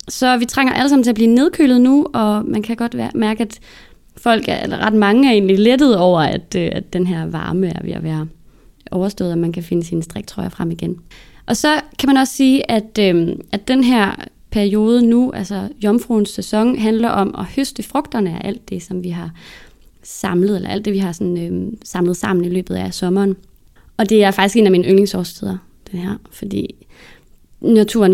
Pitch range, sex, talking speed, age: 185-225 Hz, female, 205 wpm, 20-39